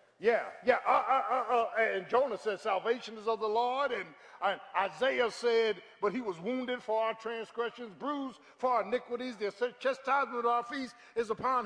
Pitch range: 160-240 Hz